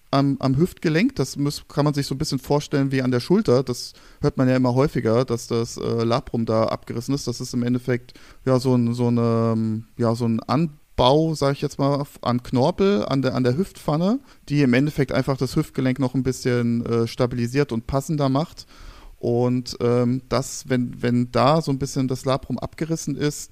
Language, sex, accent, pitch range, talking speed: German, male, German, 125-145 Hz, 200 wpm